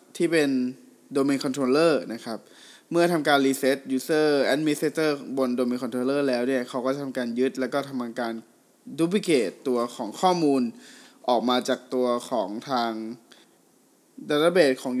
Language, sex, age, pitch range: Thai, male, 20-39, 125-150 Hz